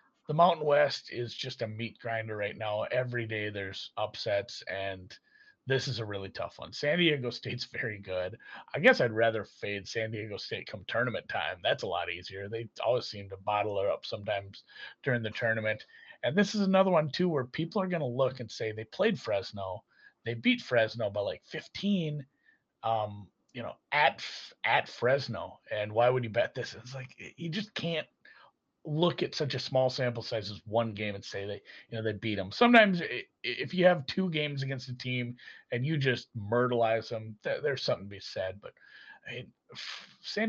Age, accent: 30-49, American